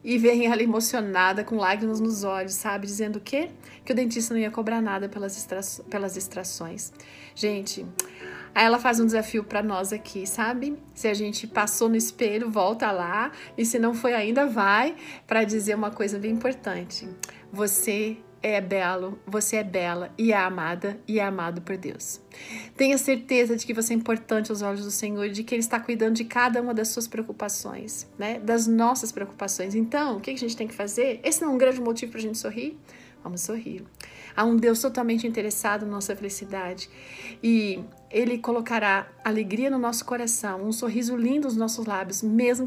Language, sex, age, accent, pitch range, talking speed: Portuguese, female, 40-59, Brazilian, 200-235 Hz, 190 wpm